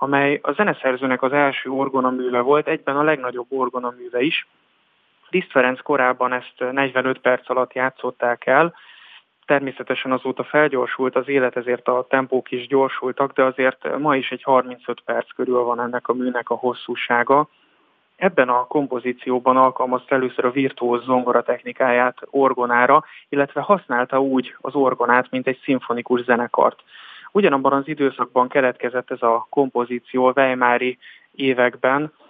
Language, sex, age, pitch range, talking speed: Hungarian, male, 20-39, 125-135 Hz, 135 wpm